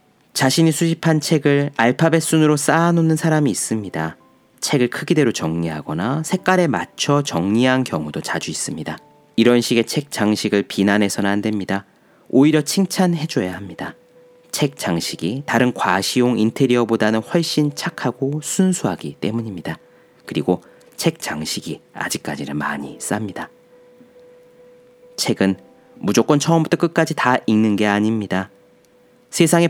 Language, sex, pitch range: Korean, male, 100-160 Hz